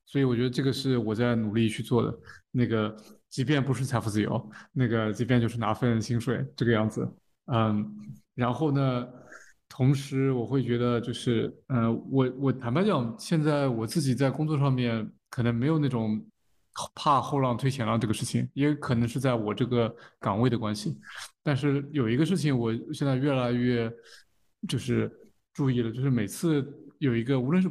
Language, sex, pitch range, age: Chinese, male, 115-135 Hz, 20-39